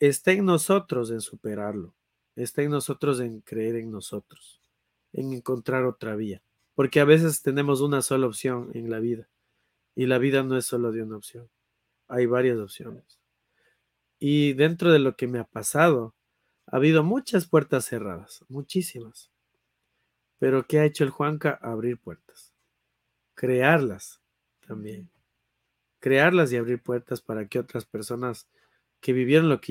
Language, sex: Spanish, male